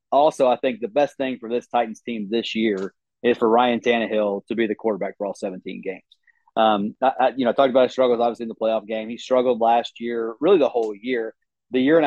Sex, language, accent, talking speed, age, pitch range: male, English, American, 240 wpm, 30-49, 115-140 Hz